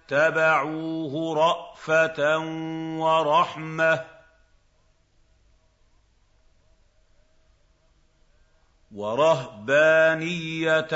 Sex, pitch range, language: male, 105-160 Hz, Arabic